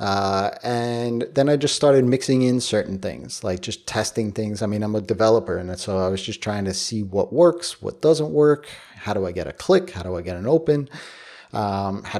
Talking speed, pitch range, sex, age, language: 225 wpm, 100-120 Hz, male, 30-49, English